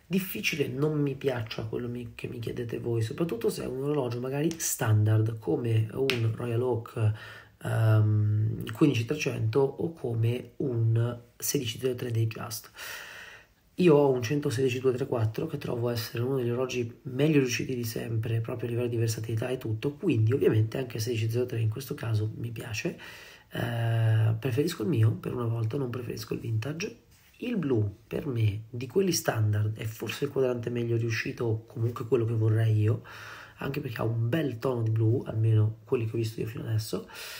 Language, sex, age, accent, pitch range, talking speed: Italian, male, 30-49, native, 115-140 Hz, 165 wpm